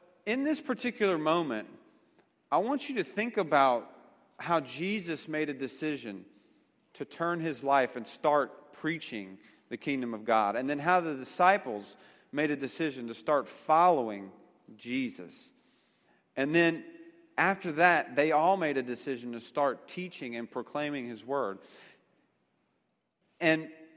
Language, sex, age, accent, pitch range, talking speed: English, male, 40-59, American, 125-180 Hz, 140 wpm